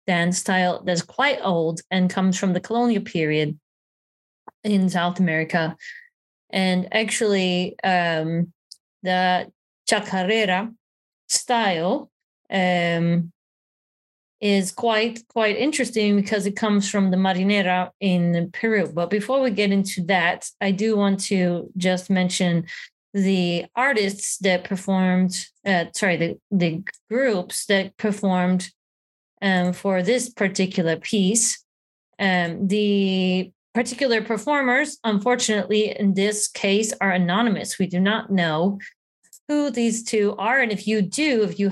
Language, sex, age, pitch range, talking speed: English, female, 20-39, 180-215 Hz, 120 wpm